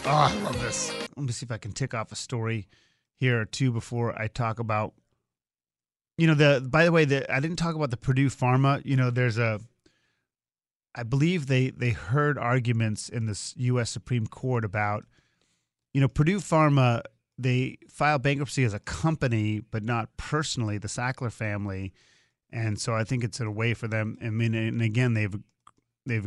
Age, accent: 30-49, American